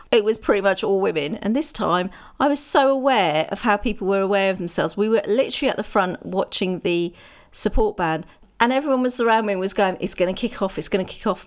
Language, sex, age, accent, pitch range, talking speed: English, female, 40-59, British, 195-295 Hz, 250 wpm